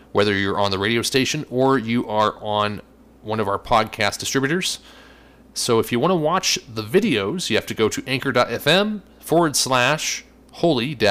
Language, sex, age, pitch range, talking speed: English, male, 30-49, 105-140 Hz, 175 wpm